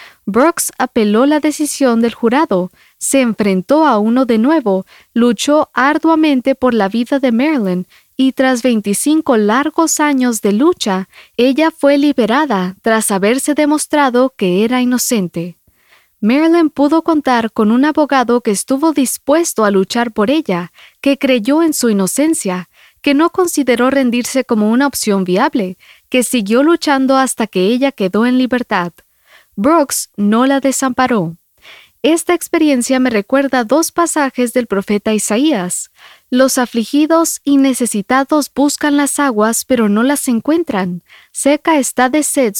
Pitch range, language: 220-285 Hz, English